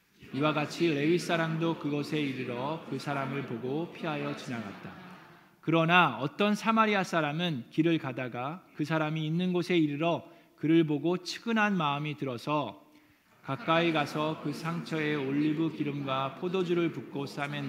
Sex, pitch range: male, 135-165 Hz